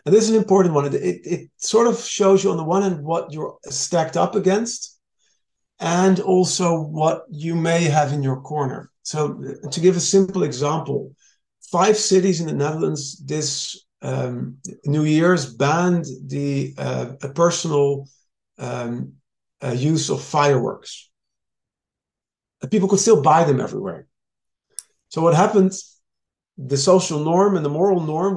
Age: 50-69